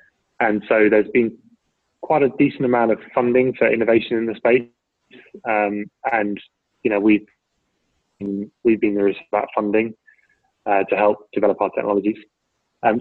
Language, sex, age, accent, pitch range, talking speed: English, male, 20-39, British, 100-115 Hz, 155 wpm